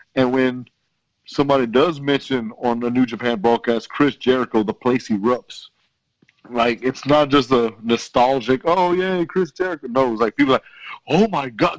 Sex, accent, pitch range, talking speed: male, American, 115-145 Hz, 165 wpm